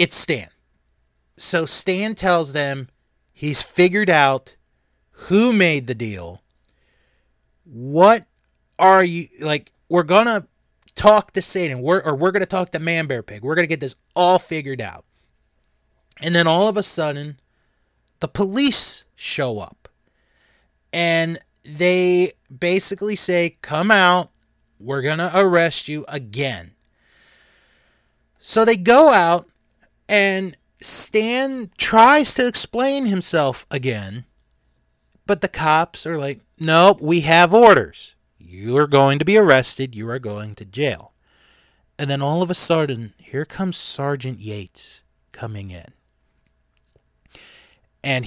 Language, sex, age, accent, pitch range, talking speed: English, male, 30-49, American, 105-175 Hz, 135 wpm